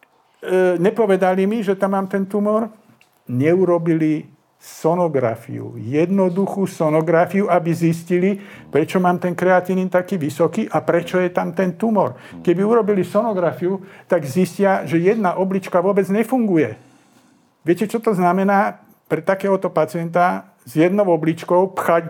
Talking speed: 130 wpm